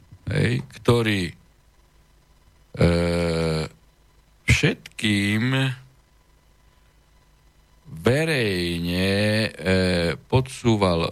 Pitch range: 80-100 Hz